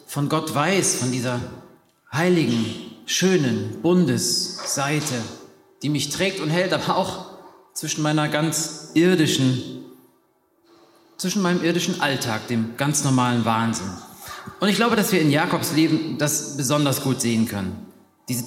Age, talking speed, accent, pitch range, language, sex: 30-49, 135 wpm, German, 125-165 Hz, German, male